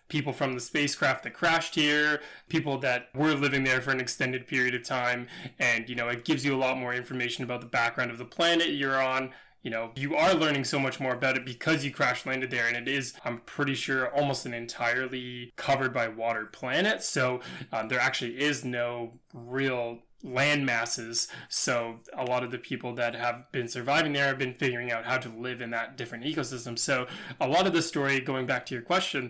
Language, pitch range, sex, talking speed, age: English, 120-140 Hz, male, 215 wpm, 20-39